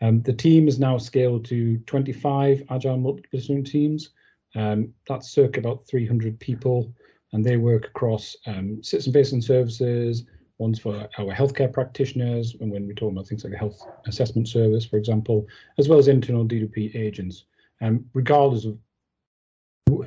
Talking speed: 160 wpm